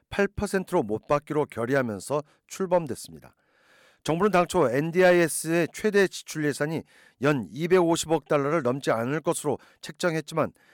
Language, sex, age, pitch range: Korean, male, 50-69, 135-180 Hz